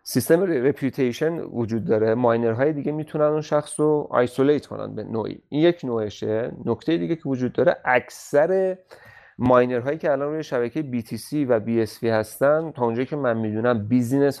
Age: 30-49